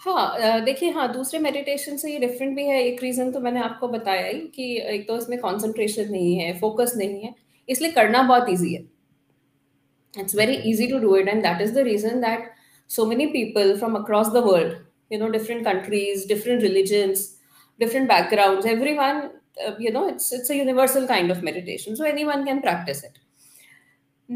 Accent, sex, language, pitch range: native, female, Hindi, 205-260 Hz